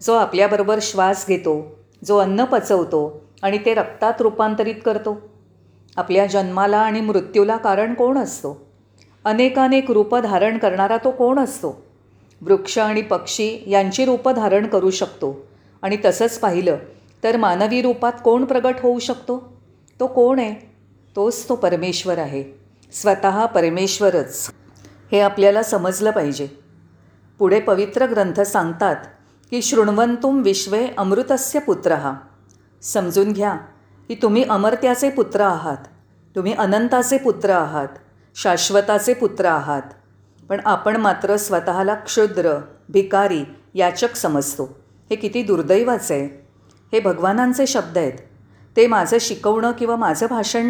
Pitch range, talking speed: 165-230 Hz, 120 wpm